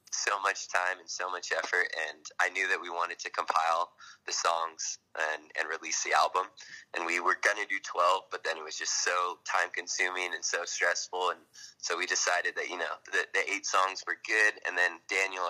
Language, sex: English, male